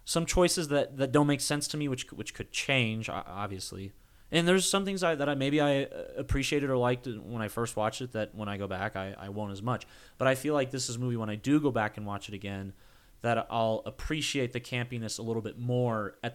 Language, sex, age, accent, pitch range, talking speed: English, male, 30-49, American, 100-135 Hz, 250 wpm